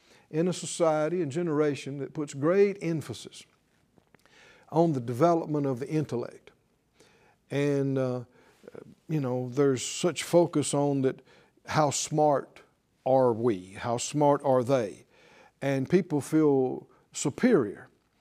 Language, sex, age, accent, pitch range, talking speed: English, male, 50-69, American, 135-170 Hz, 120 wpm